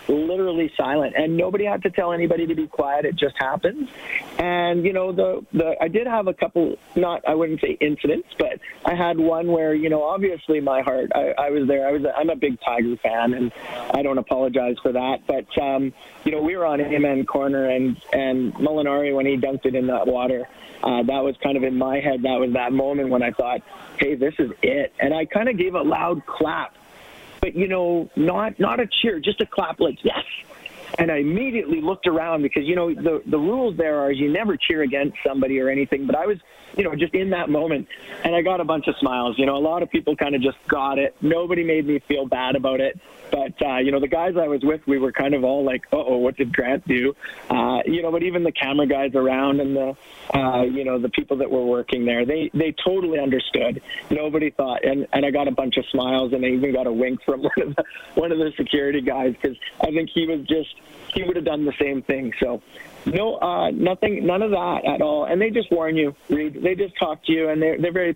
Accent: American